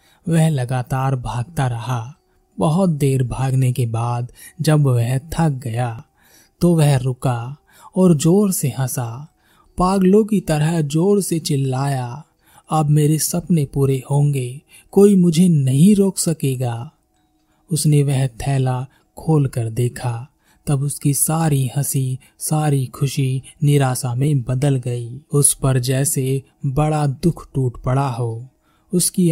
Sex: male